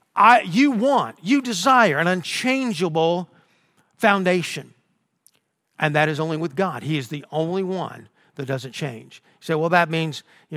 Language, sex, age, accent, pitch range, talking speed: English, male, 50-69, American, 135-175 Hz, 155 wpm